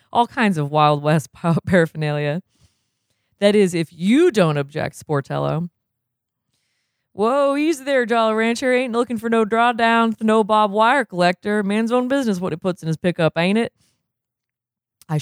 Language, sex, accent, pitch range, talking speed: English, female, American, 150-195 Hz, 155 wpm